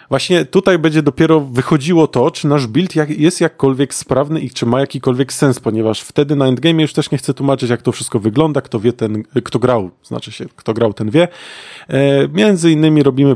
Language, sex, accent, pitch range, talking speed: Polish, male, native, 115-145 Hz, 200 wpm